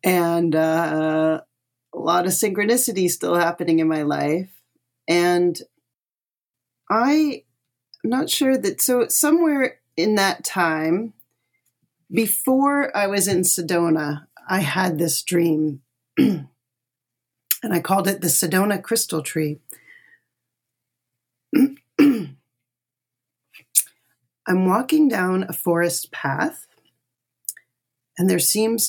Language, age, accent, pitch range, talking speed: English, 40-59, American, 150-200 Hz, 100 wpm